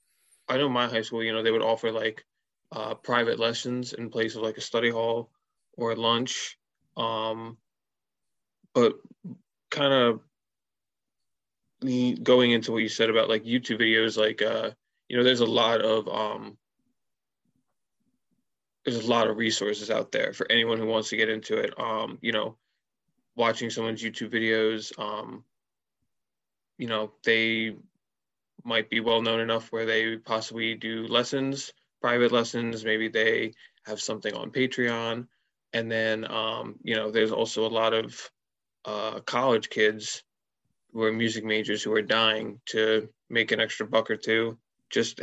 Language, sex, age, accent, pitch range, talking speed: English, male, 20-39, American, 110-115 Hz, 155 wpm